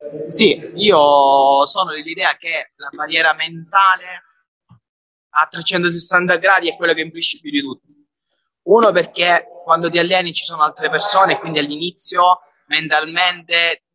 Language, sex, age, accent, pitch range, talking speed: Italian, male, 30-49, native, 150-195 Hz, 135 wpm